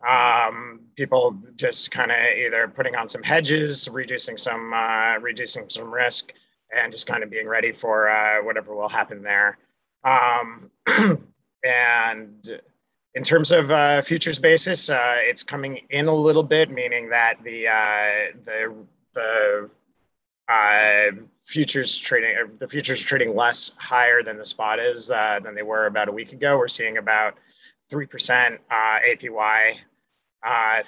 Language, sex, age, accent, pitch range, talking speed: English, male, 30-49, American, 110-145 Hz, 150 wpm